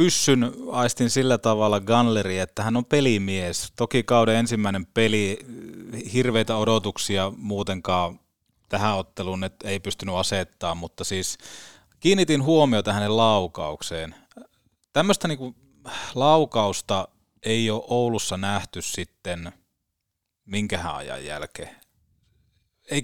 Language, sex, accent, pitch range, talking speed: Finnish, male, native, 95-115 Hz, 105 wpm